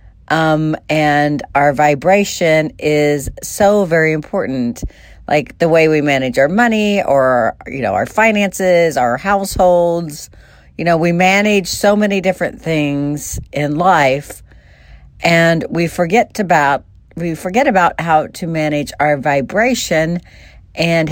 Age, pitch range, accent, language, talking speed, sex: 50-69, 145-195 Hz, American, English, 130 wpm, female